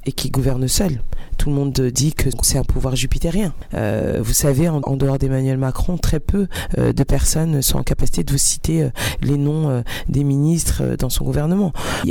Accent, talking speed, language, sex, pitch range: French, 210 wpm, French, female, 130-165 Hz